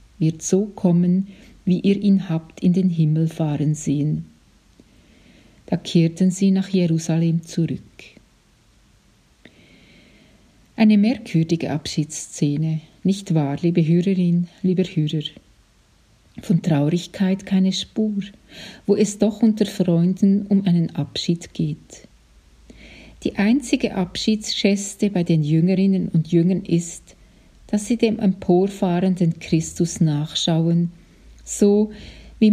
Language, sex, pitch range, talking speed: German, female, 160-195 Hz, 105 wpm